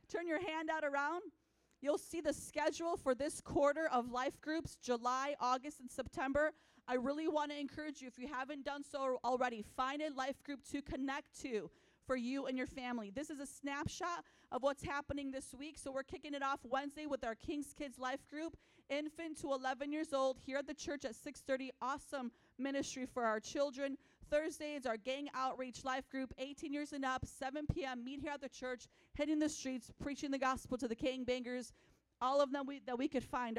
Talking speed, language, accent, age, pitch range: 205 wpm, English, American, 40-59, 255-295 Hz